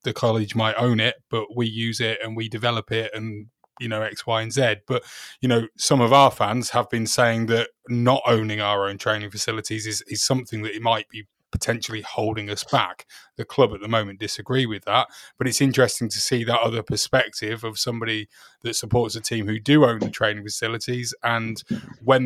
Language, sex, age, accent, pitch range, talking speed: English, male, 20-39, British, 110-135 Hz, 210 wpm